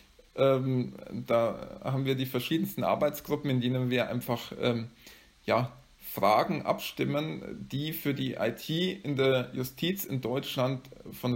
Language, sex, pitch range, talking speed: English, male, 125-155 Hz, 125 wpm